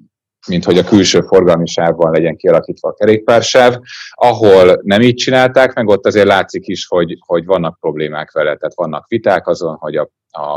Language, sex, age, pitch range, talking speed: Hungarian, male, 30-49, 80-110 Hz, 170 wpm